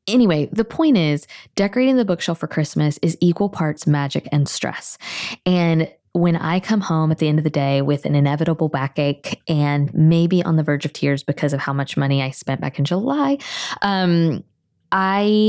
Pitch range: 155-200 Hz